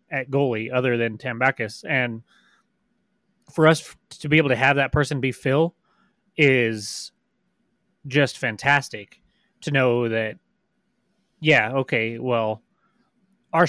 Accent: American